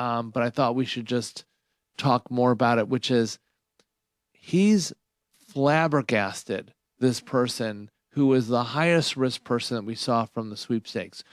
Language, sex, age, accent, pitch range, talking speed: English, male, 40-59, American, 120-150 Hz, 155 wpm